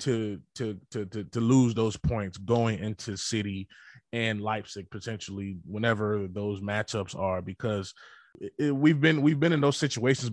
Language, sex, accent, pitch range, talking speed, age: English, male, American, 105-130 Hz, 155 wpm, 20-39